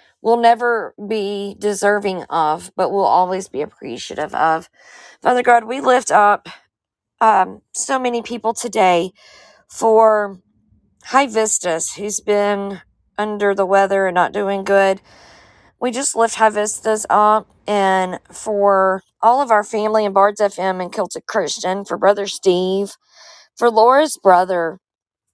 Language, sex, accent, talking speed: English, female, American, 135 wpm